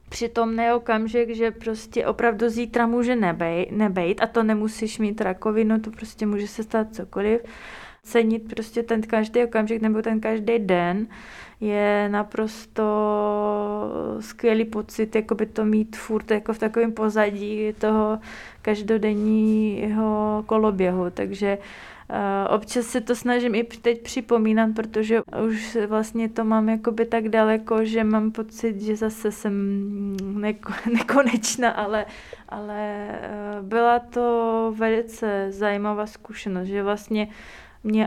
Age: 20-39